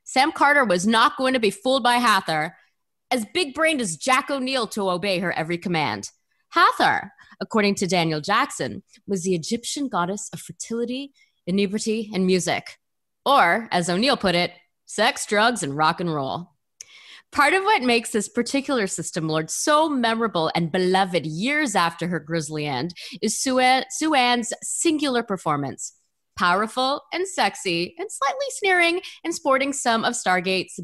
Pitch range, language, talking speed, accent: 180-270 Hz, English, 155 wpm, American